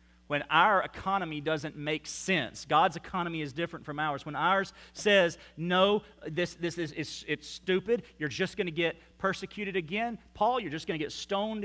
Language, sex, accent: English, male, American